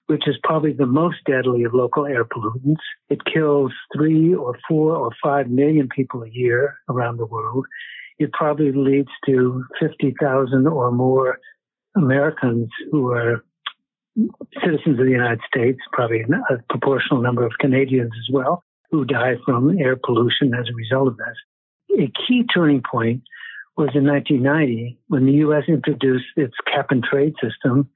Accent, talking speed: American, 155 wpm